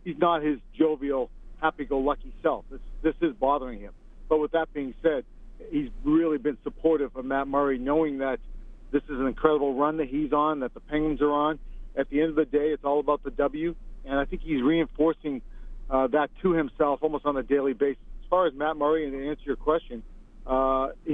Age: 40-59